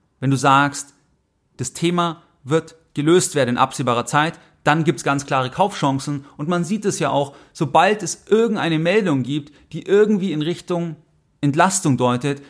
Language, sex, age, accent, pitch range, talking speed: German, male, 30-49, German, 135-160 Hz, 160 wpm